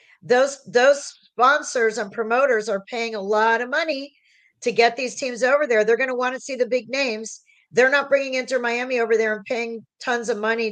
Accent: American